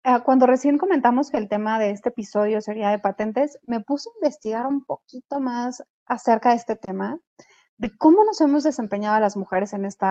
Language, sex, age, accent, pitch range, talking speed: Spanish, female, 30-49, Mexican, 210-265 Hz, 195 wpm